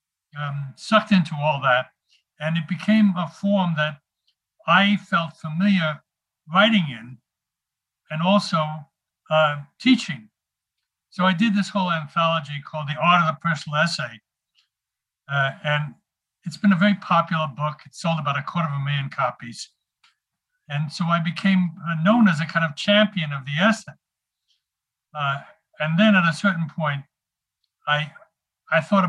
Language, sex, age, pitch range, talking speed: English, male, 60-79, 145-185 Hz, 150 wpm